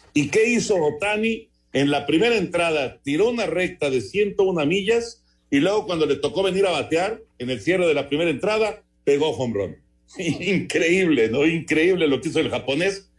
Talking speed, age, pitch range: 180 wpm, 50-69, 125-190 Hz